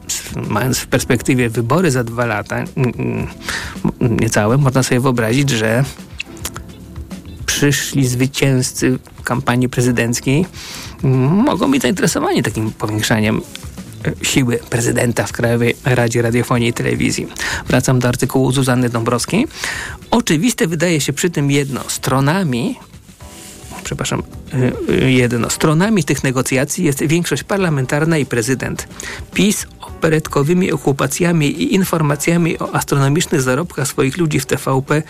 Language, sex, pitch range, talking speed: Polish, male, 125-160 Hz, 110 wpm